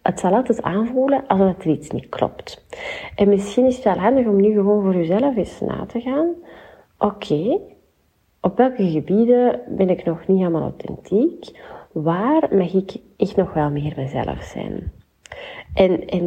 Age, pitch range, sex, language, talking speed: 30-49, 175-215 Hz, female, Dutch, 170 wpm